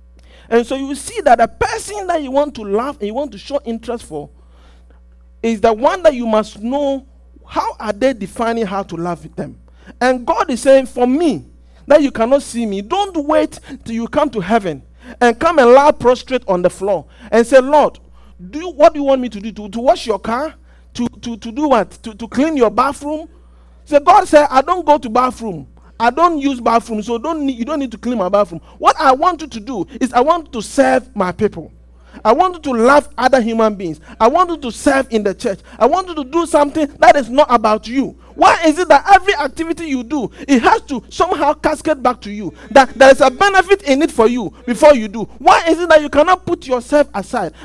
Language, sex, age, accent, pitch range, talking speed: English, male, 50-69, Nigerian, 220-300 Hz, 235 wpm